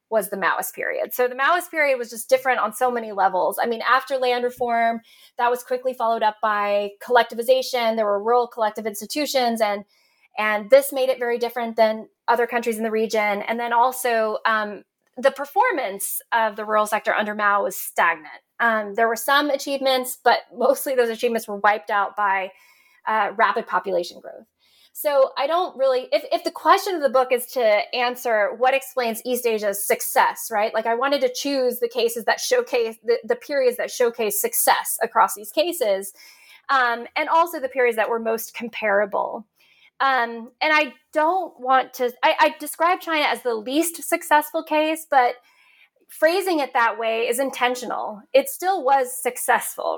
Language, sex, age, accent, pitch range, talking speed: English, female, 20-39, American, 225-285 Hz, 180 wpm